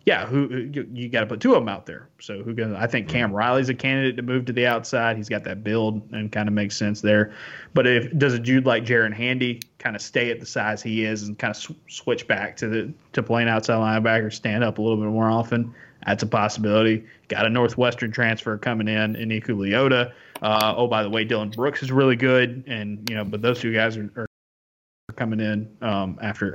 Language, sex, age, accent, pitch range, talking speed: English, male, 20-39, American, 105-125 Hz, 235 wpm